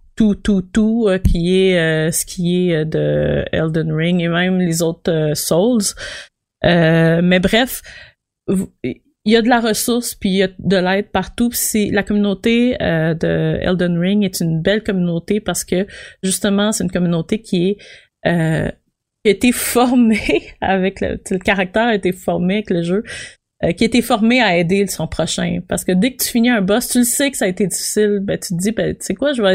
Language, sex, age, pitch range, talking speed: French, female, 30-49, 175-220 Hz, 205 wpm